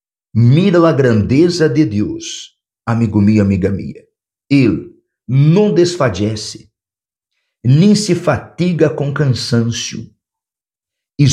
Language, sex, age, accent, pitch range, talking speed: Spanish, male, 50-69, Brazilian, 115-160 Hz, 95 wpm